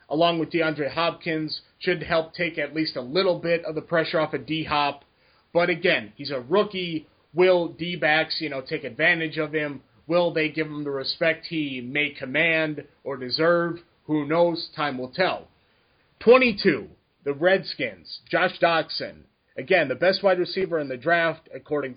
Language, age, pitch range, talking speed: English, 30-49, 145-175 Hz, 165 wpm